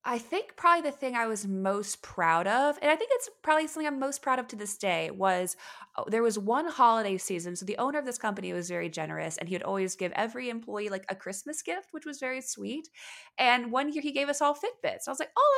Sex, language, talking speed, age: female, English, 255 wpm, 20-39